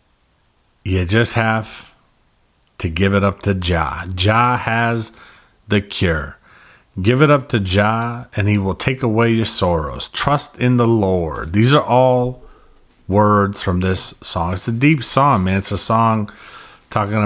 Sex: male